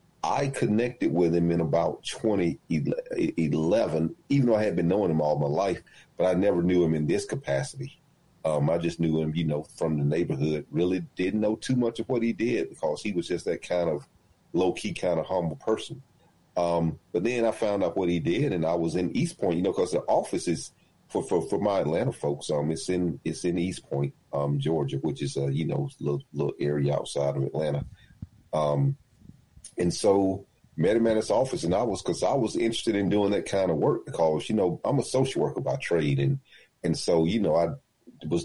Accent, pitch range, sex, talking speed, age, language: American, 75-90 Hz, male, 220 wpm, 40-59, English